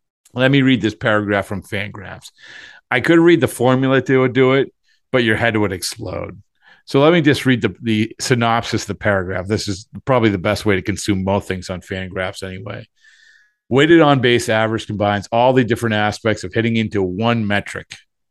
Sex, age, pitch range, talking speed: male, 50-69, 100-125 Hz, 190 wpm